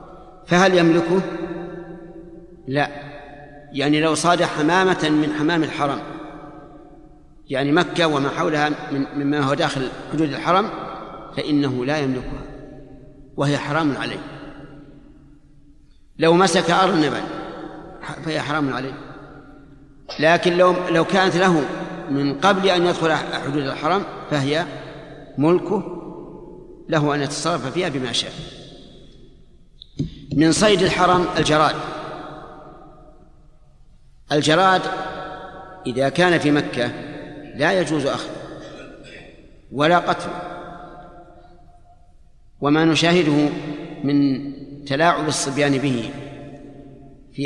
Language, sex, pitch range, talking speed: Arabic, male, 140-175 Hz, 90 wpm